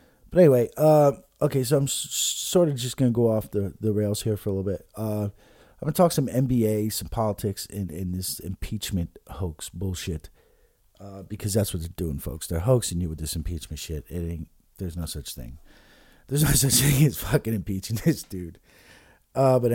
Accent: American